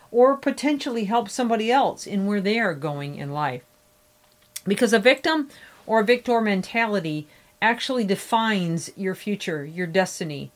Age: 40-59